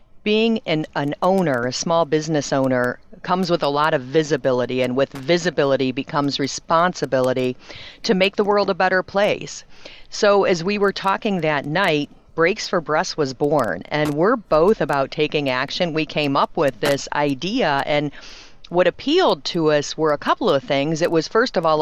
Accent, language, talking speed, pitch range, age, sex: American, English, 180 wpm, 140-180 Hz, 50-69, female